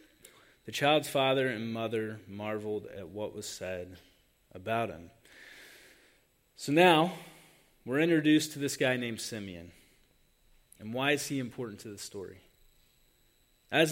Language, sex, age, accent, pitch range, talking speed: English, male, 20-39, American, 115-150 Hz, 130 wpm